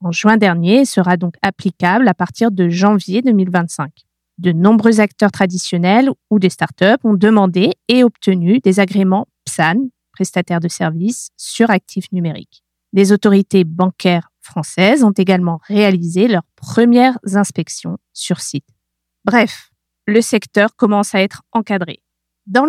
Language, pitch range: French, 185-225 Hz